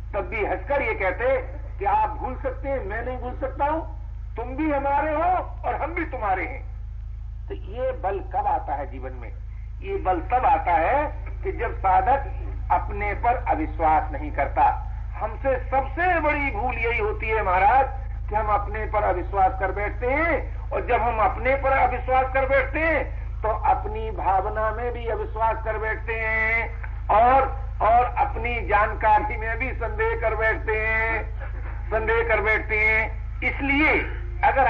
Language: Hindi